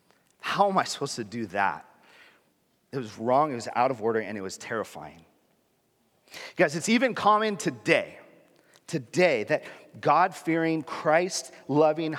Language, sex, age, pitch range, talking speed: English, male, 30-49, 125-185 Hz, 140 wpm